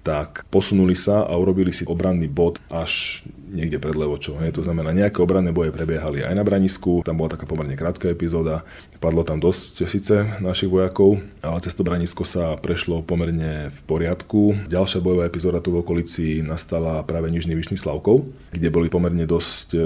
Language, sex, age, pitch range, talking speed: Slovak, male, 30-49, 80-90 Hz, 165 wpm